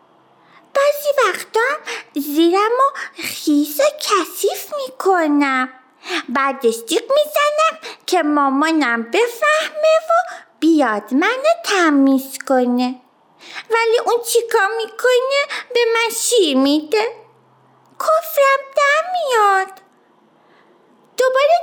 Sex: female